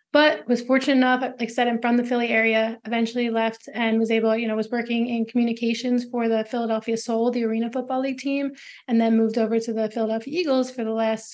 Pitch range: 220-240 Hz